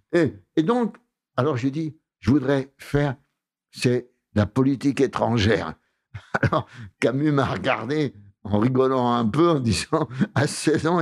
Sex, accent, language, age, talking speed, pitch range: male, French, French, 60-79, 140 wpm, 120-150 Hz